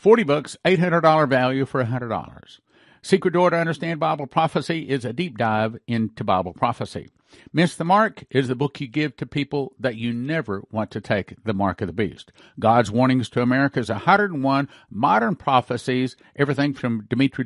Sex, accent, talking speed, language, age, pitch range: male, American, 175 wpm, English, 50-69, 120-155 Hz